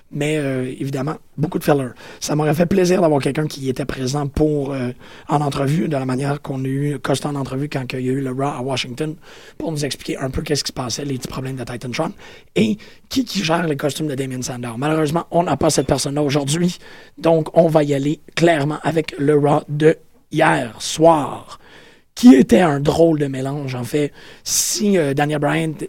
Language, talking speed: French, 215 wpm